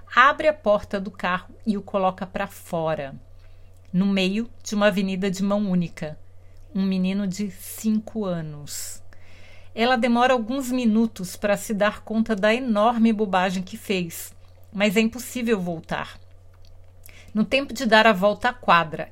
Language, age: Portuguese, 50-69